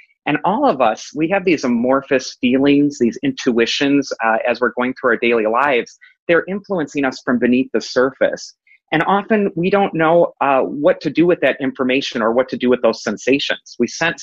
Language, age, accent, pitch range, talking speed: English, 30-49, American, 130-180 Hz, 200 wpm